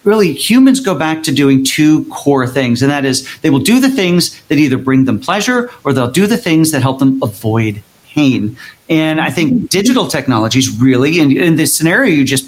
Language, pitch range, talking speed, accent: English, 130-170 Hz, 205 wpm, American